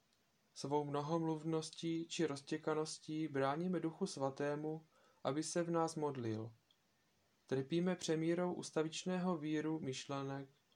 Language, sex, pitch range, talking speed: Czech, male, 140-165 Hz, 95 wpm